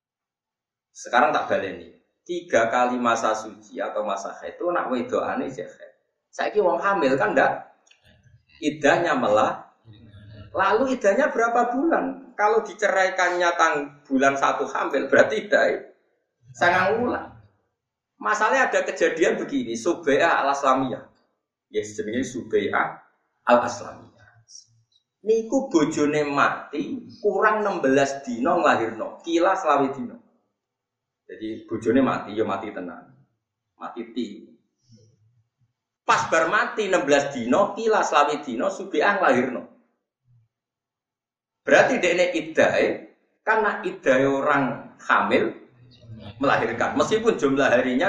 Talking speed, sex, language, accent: 110 wpm, male, Indonesian, native